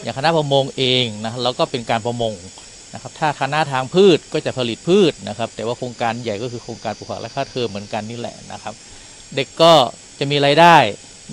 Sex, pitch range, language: male, 120-160 Hz, Thai